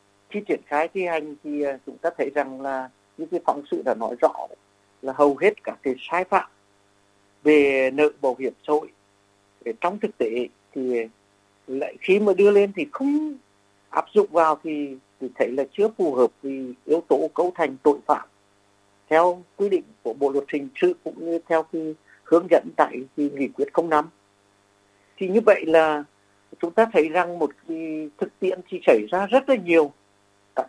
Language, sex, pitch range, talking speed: Vietnamese, male, 130-175 Hz, 190 wpm